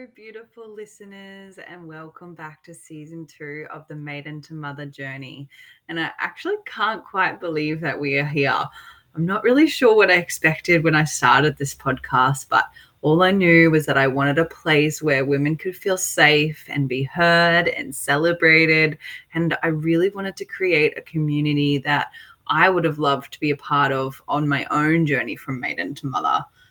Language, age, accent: English, 10-29, Australian